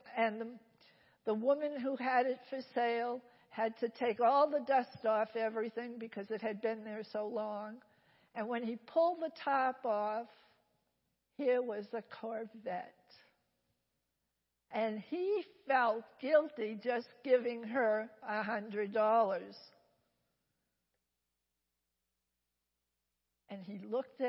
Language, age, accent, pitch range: English, 60-79, American, 195-255 Hz